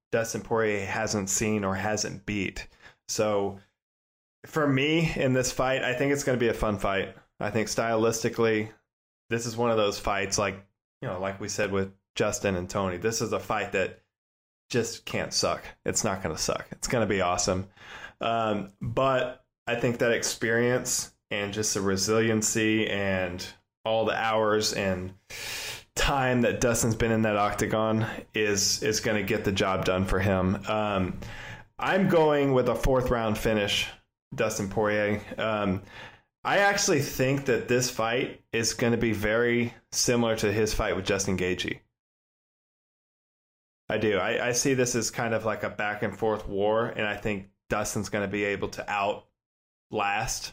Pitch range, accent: 100-120 Hz, American